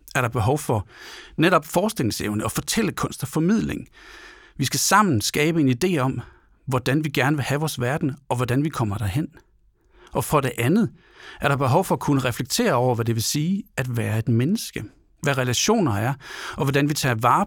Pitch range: 115-160 Hz